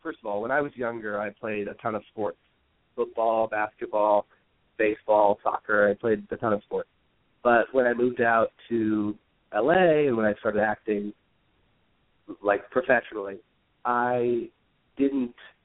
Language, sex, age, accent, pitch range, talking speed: English, male, 30-49, American, 105-130 Hz, 150 wpm